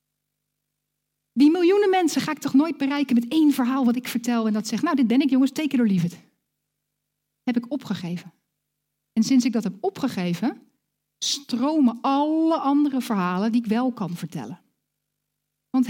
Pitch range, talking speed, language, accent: 205-275 Hz, 165 wpm, Dutch, Dutch